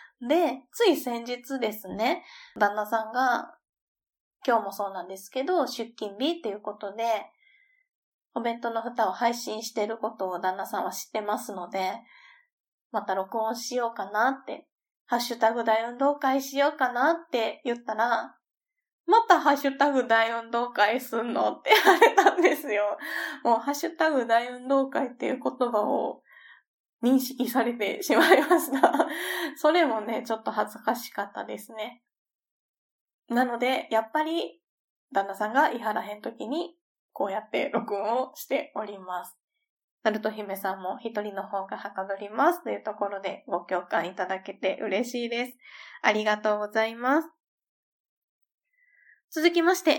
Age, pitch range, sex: 20-39, 215-295 Hz, female